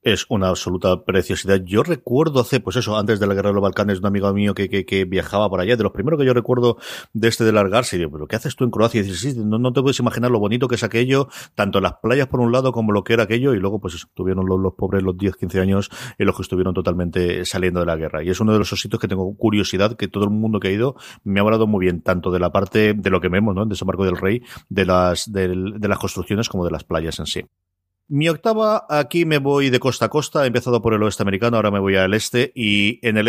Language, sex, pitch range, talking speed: Spanish, male, 95-120 Hz, 285 wpm